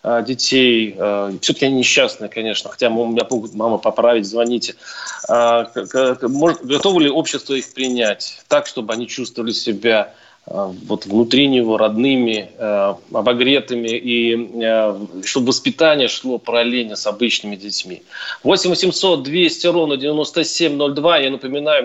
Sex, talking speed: male, 120 wpm